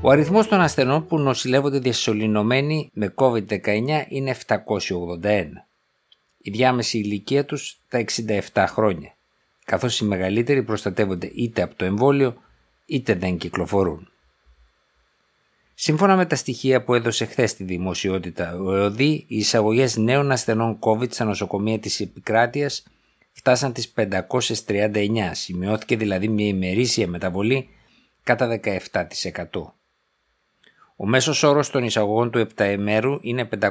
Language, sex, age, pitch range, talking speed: Greek, male, 50-69, 100-130 Hz, 120 wpm